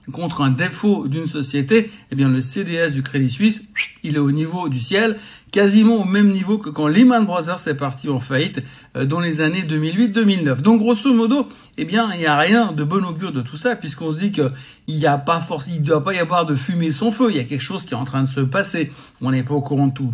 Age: 60-79